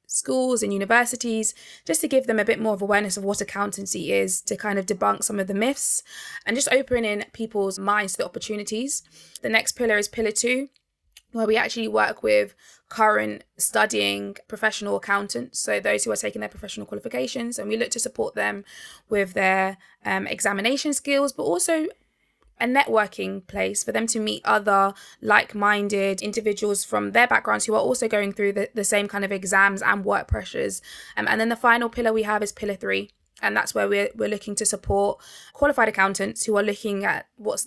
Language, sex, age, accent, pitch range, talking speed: English, female, 20-39, British, 195-225 Hz, 190 wpm